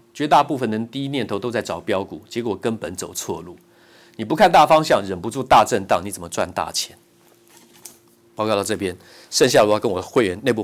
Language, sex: Chinese, male